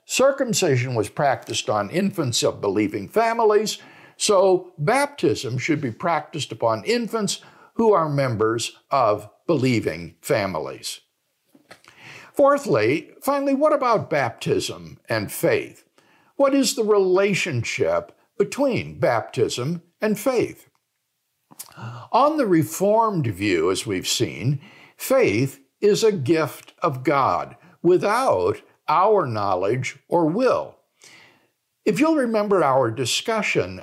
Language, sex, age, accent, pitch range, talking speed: English, male, 60-79, American, 140-235 Hz, 105 wpm